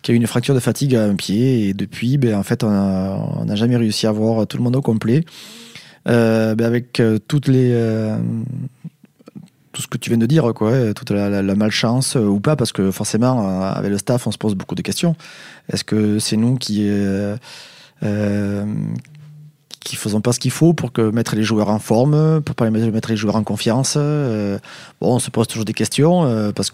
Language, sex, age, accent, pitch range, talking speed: French, male, 20-39, French, 105-130 Hz, 225 wpm